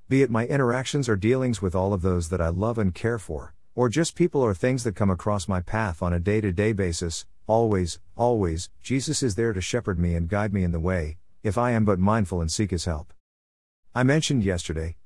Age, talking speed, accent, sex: 50-69, 225 wpm, American, male